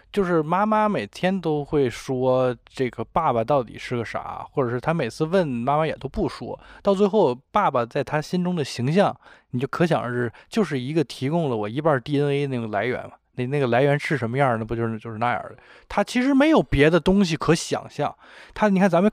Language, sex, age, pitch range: Chinese, male, 20-39, 125-190 Hz